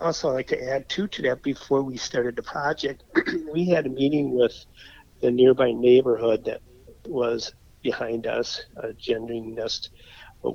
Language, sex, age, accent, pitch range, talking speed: English, male, 50-69, American, 115-130 Hz, 165 wpm